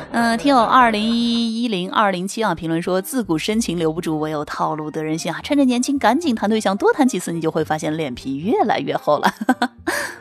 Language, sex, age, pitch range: Chinese, female, 20-39, 190-280 Hz